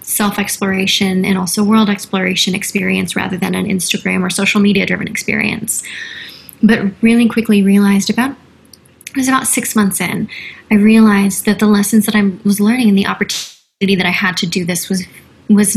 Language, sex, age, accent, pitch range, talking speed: English, female, 20-39, American, 190-215 Hz, 170 wpm